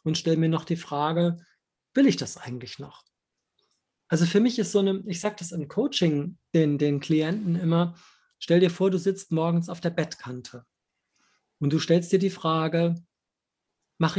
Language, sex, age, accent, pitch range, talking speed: German, male, 40-59, German, 155-180 Hz, 180 wpm